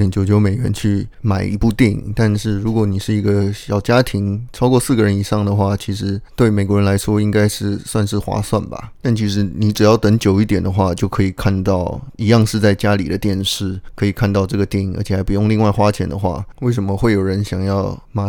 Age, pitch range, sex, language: 20-39, 100-110 Hz, male, Chinese